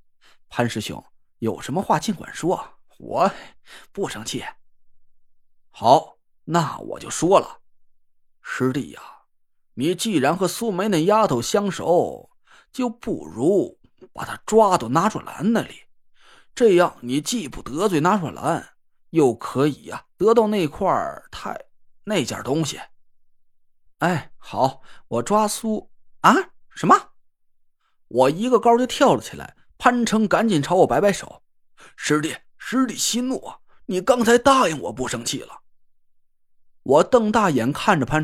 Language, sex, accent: Chinese, male, native